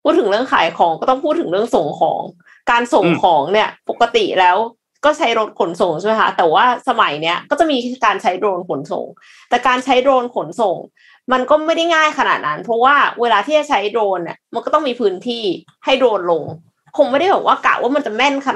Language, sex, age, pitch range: Thai, female, 20-39, 195-270 Hz